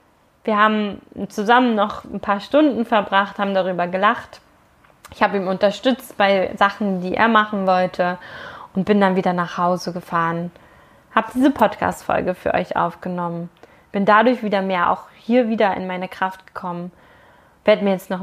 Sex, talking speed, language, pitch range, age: female, 160 wpm, German, 185-230 Hz, 20-39